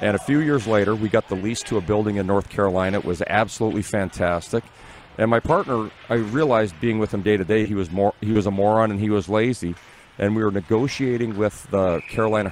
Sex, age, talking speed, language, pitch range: male, 40-59, 230 wpm, English, 100-115 Hz